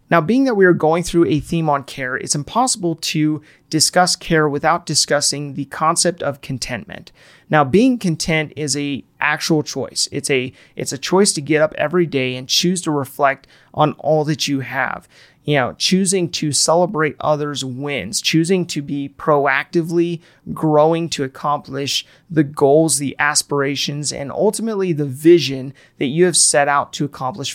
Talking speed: 170 wpm